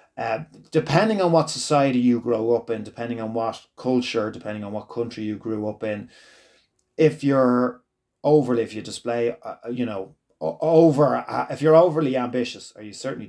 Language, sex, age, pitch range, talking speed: English, male, 30-49, 110-135 Hz, 175 wpm